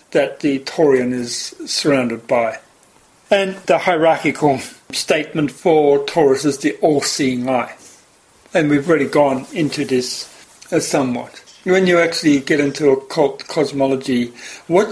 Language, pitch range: English, 140-190 Hz